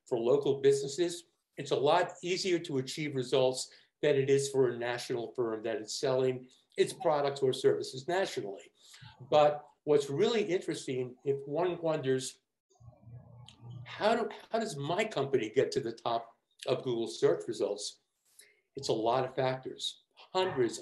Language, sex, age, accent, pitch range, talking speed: English, male, 50-69, American, 135-210 Hz, 145 wpm